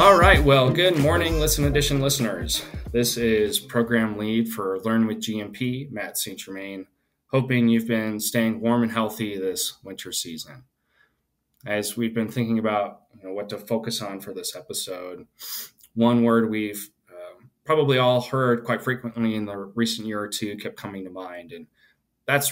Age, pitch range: 20-39, 105-125 Hz